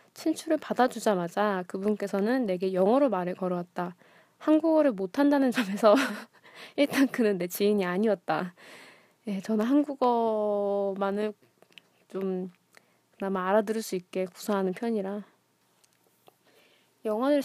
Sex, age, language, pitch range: female, 20-39, Korean, 195-250 Hz